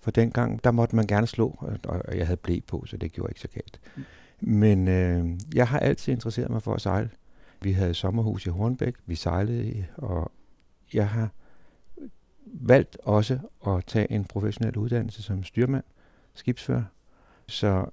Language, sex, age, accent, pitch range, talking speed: Danish, male, 60-79, native, 95-115 Hz, 165 wpm